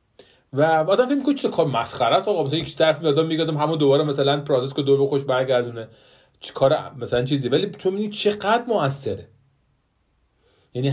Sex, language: male, Persian